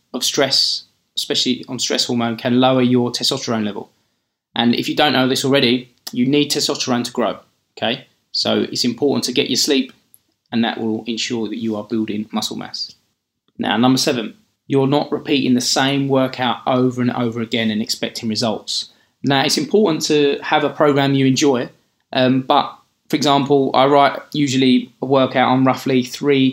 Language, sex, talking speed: English, male, 175 wpm